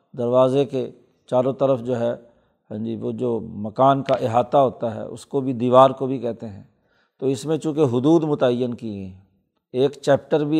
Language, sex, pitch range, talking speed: Urdu, male, 125-145 Hz, 190 wpm